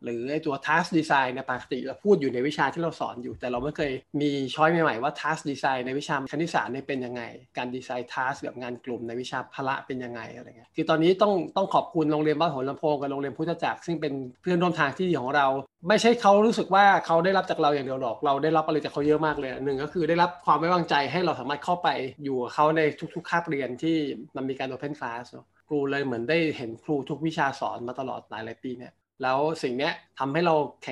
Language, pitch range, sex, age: Thai, 135-160 Hz, male, 20-39